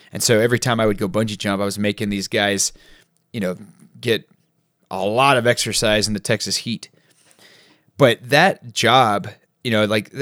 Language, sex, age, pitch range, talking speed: English, male, 30-49, 100-120 Hz, 180 wpm